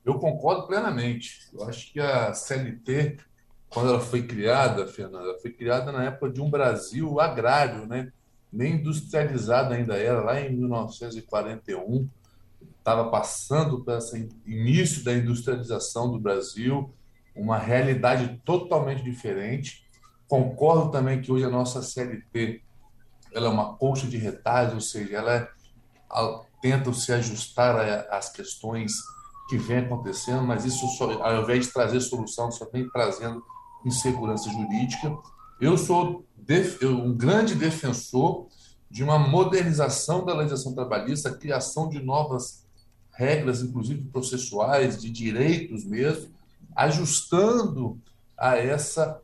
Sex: male